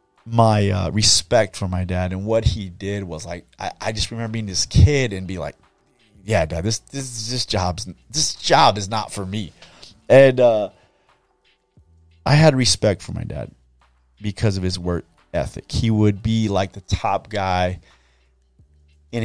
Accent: American